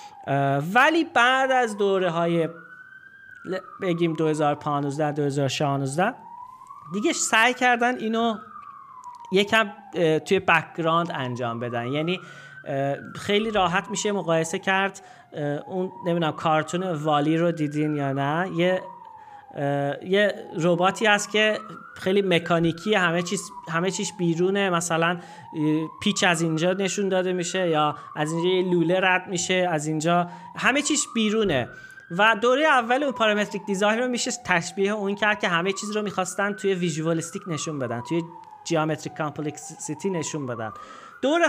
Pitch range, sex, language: 170-235 Hz, male, Persian